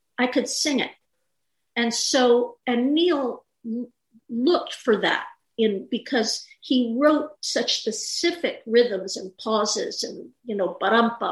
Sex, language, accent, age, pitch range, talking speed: female, English, American, 50-69, 210-255 Hz, 140 wpm